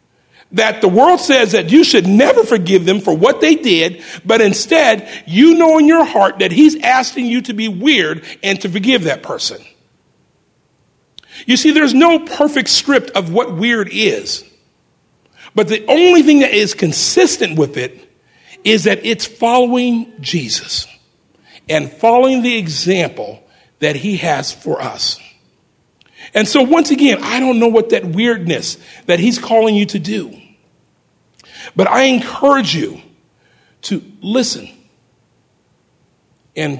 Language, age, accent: English, 50-69, American